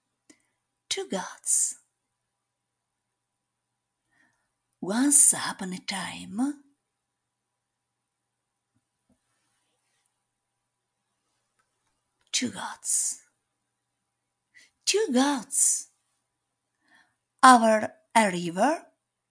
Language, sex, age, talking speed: Italian, female, 50-69, 35 wpm